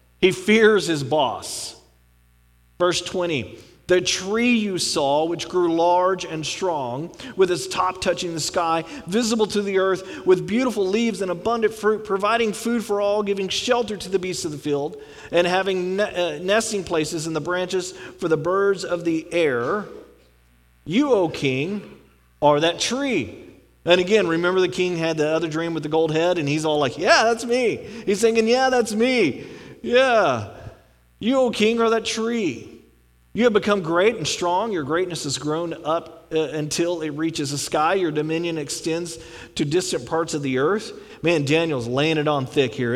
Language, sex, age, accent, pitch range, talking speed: English, male, 40-59, American, 150-195 Hz, 180 wpm